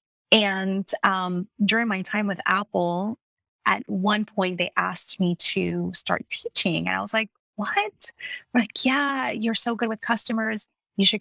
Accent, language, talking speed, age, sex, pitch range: American, English, 160 wpm, 20-39, female, 175-210 Hz